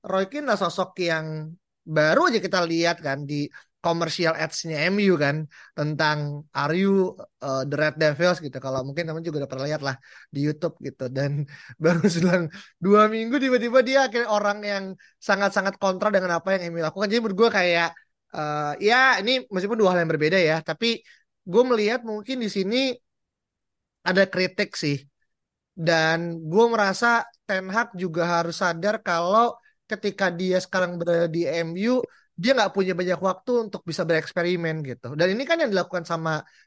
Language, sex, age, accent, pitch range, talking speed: Indonesian, male, 20-39, native, 160-210 Hz, 165 wpm